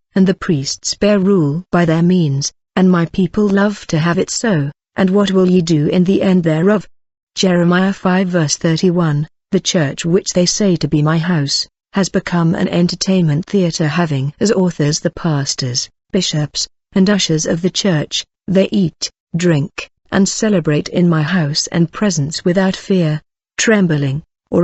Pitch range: 160-190 Hz